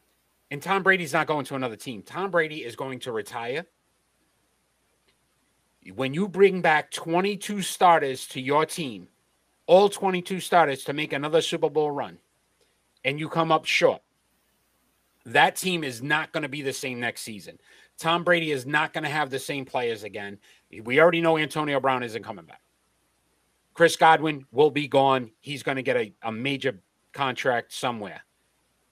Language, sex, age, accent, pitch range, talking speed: English, male, 40-59, American, 130-165 Hz, 165 wpm